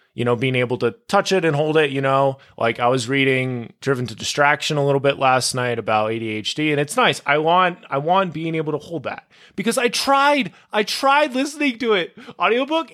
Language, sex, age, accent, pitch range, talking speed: English, male, 20-39, American, 130-190 Hz, 215 wpm